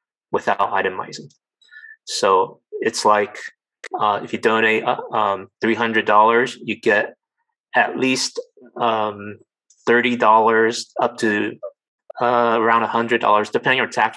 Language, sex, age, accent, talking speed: English, male, 30-49, American, 115 wpm